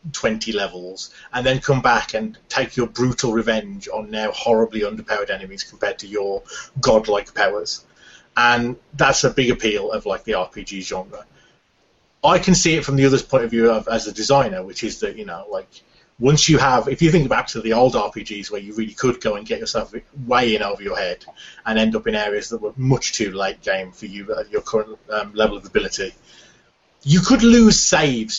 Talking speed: 210 wpm